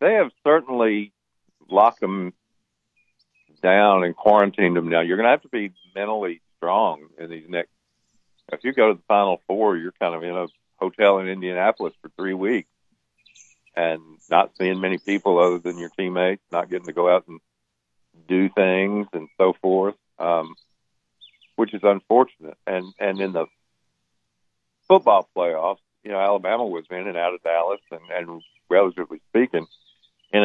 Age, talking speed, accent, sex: 60-79, 165 wpm, American, male